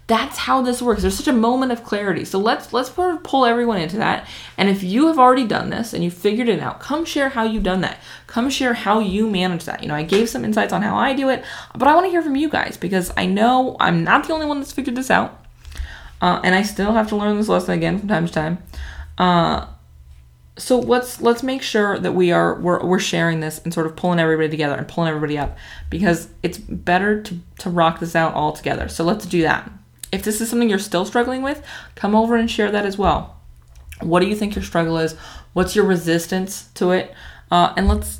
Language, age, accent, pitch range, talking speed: English, 20-39, American, 155-225 Hz, 245 wpm